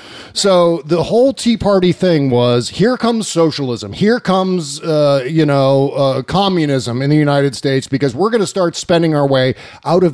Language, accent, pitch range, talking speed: English, American, 135-185 Hz, 185 wpm